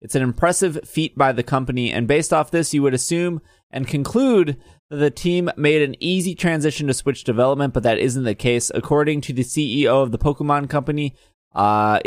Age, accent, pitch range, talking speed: 20-39, American, 125-155 Hz, 200 wpm